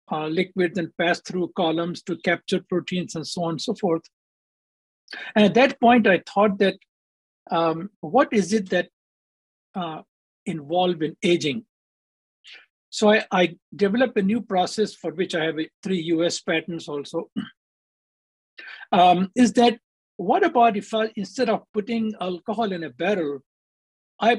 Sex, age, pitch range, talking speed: male, 60-79, 165-215 Hz, 150 wpm